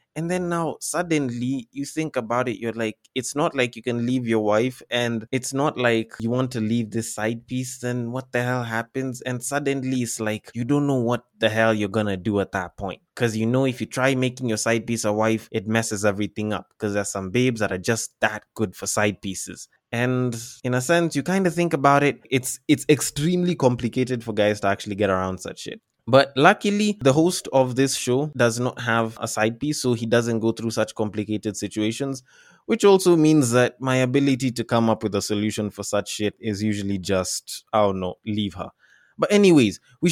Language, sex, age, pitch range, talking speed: English, male, 20-39, 110-150 Hz, 220 wpm